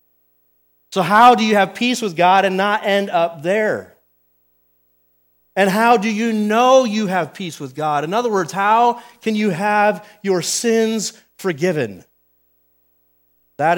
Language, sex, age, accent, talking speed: English, male, 30-49, American, 150 wpm